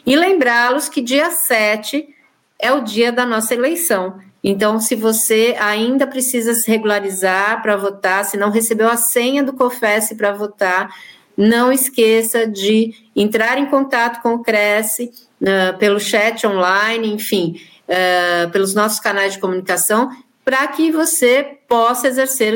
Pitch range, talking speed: 205-245 Hz, 145 wpm